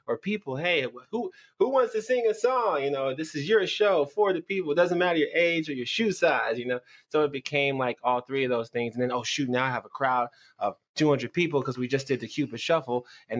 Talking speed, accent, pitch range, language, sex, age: 265 wpm, American, 110-135 Hz, English, male, 20-39